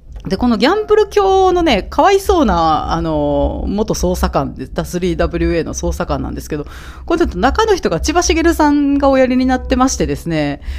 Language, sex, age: Japanese, female, 40-59